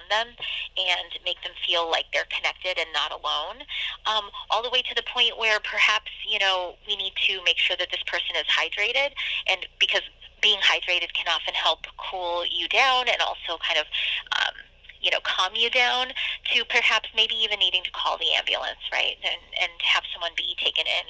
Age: 30-49